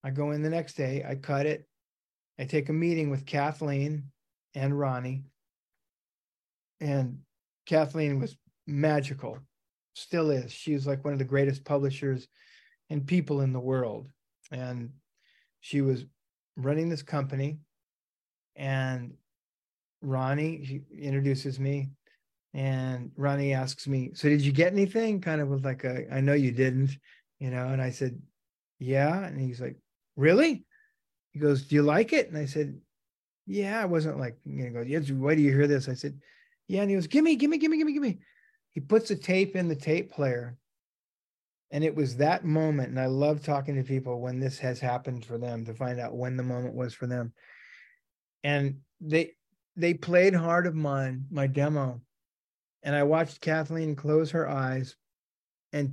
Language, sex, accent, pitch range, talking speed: English, male, American, 130-155 Hz, 165 wpm